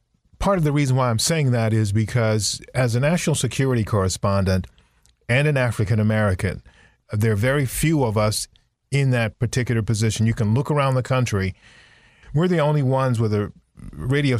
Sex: male